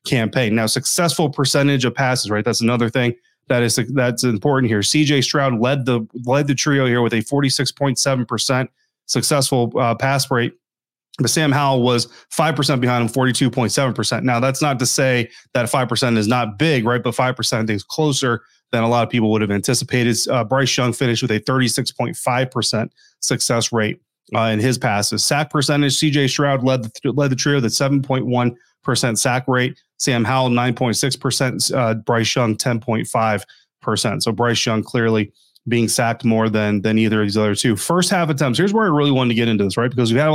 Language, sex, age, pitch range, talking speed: English, male, 30-49, 115-135 Hz, 215 wpm